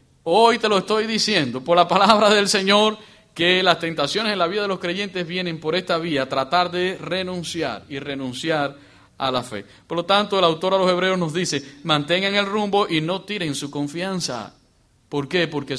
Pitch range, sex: 145-195 Hz, male